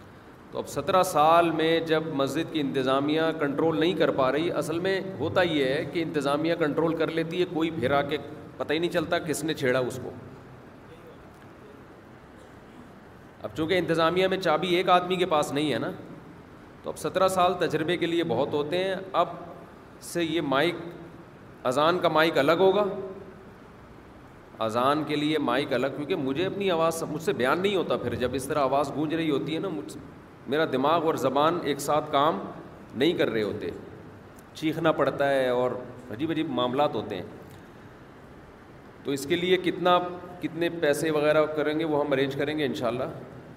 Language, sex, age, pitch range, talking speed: Urdu, male, 40-59, 140-170 Hz, 180 wpm